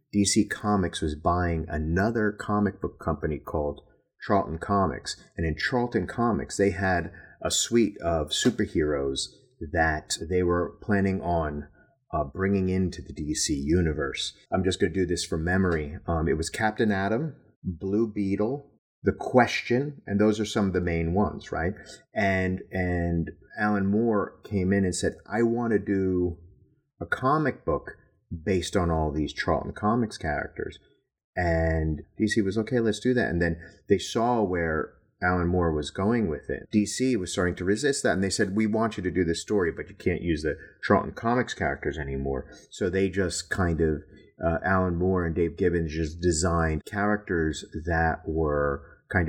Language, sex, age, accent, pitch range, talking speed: English, male, 30-49, American, 80-105 Hz, 170 wpm